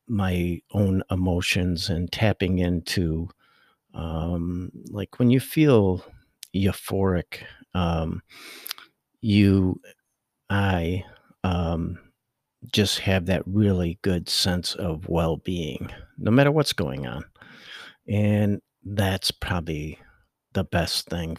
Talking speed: 100 wpm